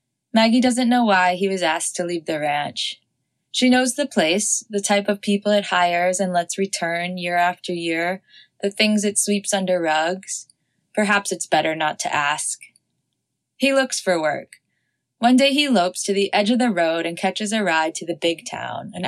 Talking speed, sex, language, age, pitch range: 195 wpm, female, English, 20-39, 165-210 Hz